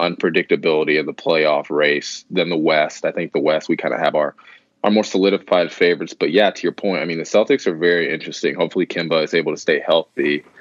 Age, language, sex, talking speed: 20-39, English, male, 225 wpm